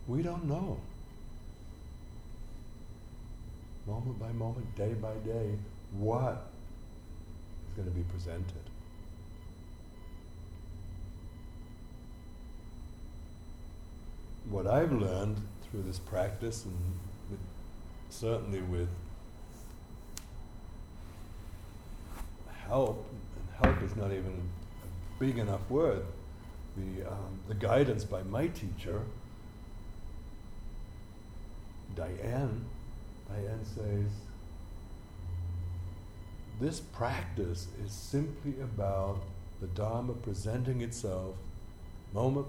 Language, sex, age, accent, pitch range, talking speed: English, male, 60-79, American, 90-110 Hz, 75 wpm